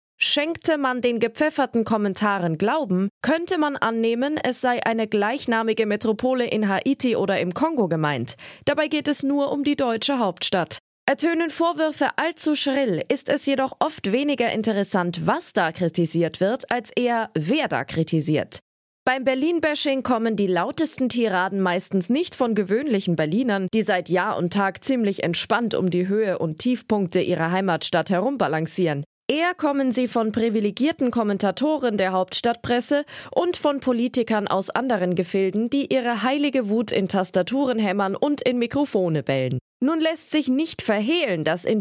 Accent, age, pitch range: German, 20-39, 190-275 Hz